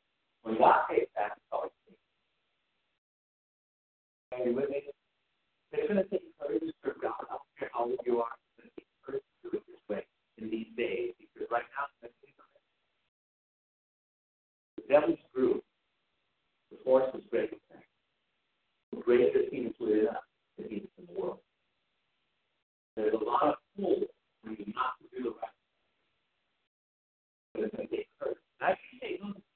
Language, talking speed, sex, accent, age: English, 145 wpm, male, American, 50-69